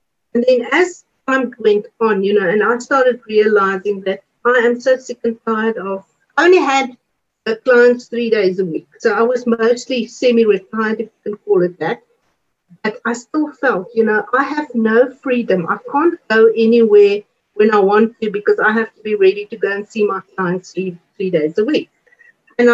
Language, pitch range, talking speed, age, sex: English, 205-250 Hz, 200 wpm, 50-69, female